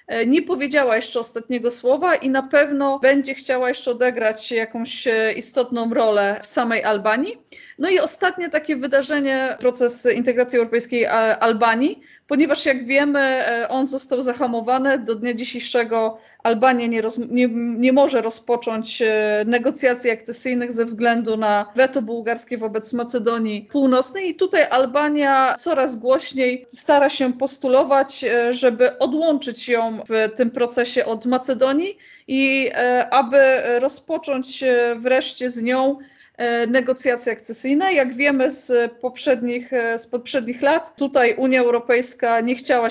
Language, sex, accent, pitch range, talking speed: Polish, female, native, 230-275 Hz, 125 wpm